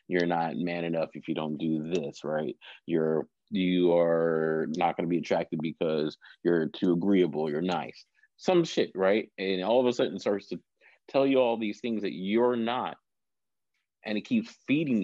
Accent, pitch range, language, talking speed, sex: American, 85-110 Hz, English, 185 wpm, male